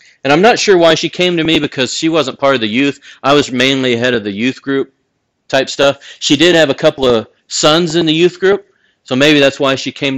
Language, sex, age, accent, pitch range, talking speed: English, male, 40-59, American, 125-150 Hz, 255 wpm